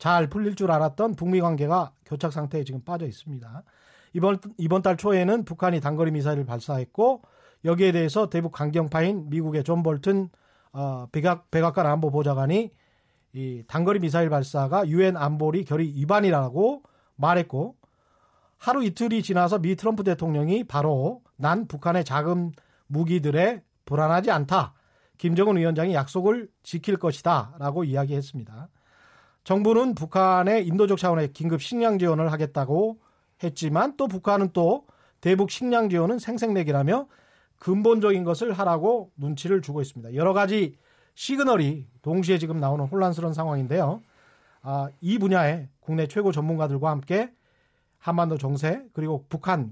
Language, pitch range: Korean, 150-200 Hz